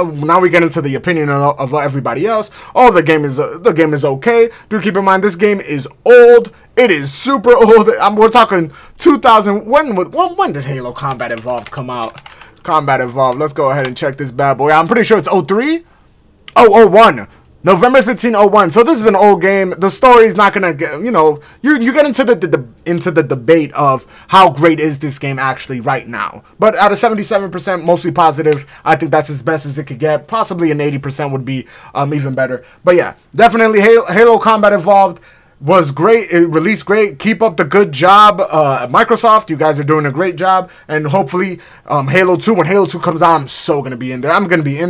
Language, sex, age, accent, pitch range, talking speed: English, male, 20-39, American, 155-225 Hz, 220 wpm